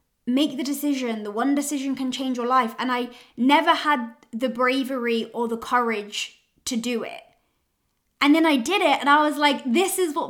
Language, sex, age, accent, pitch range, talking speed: English, female, 20-39, British, 225-275 Hz, 200 wpm